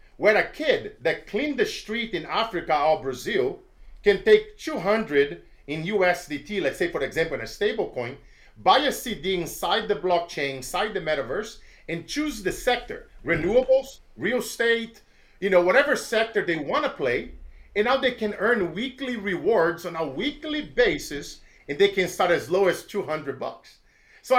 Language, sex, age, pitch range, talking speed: English, male, 50-69, 170-260 Hz, 170 wpm